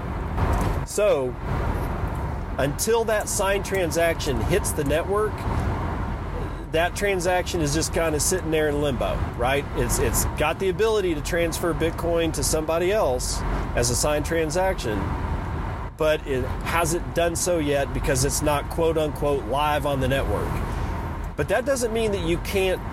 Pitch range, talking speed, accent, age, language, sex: 95-165 Hz, 145 wpm, American, 40-59, English, male